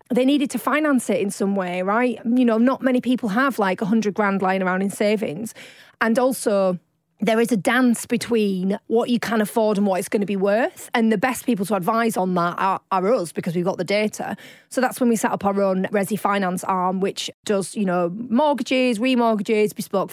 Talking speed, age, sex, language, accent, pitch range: 225 wpm, 30-49, female, English, British, 195-230 Hz